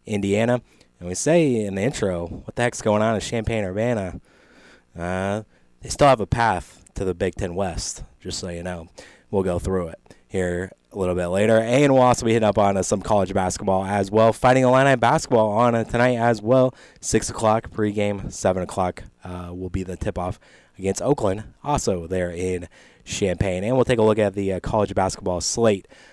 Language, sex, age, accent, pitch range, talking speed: English, male, 20-39, American, 90-110 Hz, 195 wpm